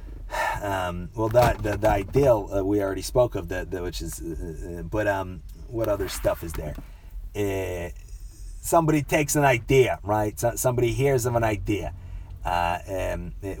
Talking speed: 165 wpm